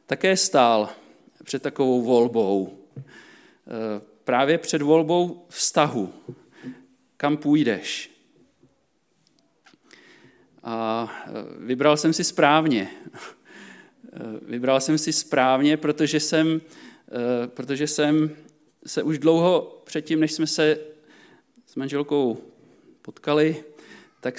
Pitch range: 125-160 Hz